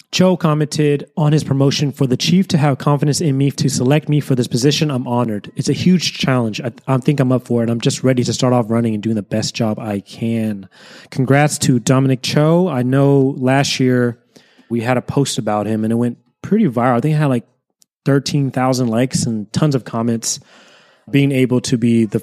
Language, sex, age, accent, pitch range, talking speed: English, male, 20-39, American, 115-145 Hz, 220 wpm